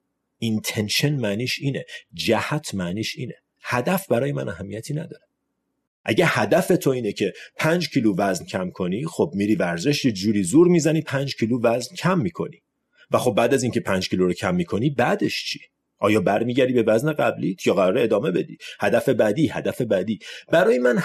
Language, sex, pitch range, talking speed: Persian, male, 100-150 Hz, 170 wpm